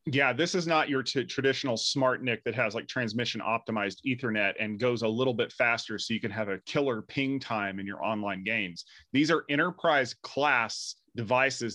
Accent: American